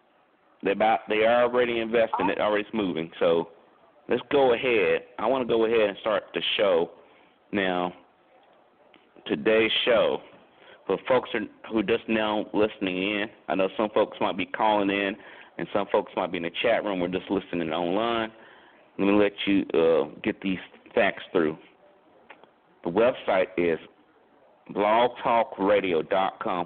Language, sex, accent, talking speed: English, male, American, 150 wpm